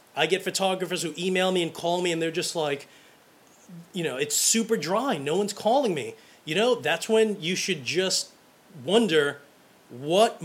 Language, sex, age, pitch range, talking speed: English, male, 30-49, 165-205 Hz, 180 wpm